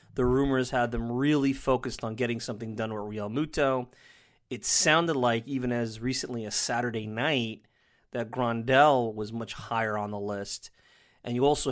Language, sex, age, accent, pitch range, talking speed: English, male, 30-49, American, 115-135 Hz, 170 wpm